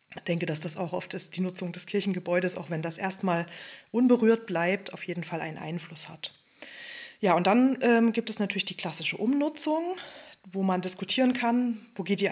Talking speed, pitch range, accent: 195 wpm, 185-225 Hz, German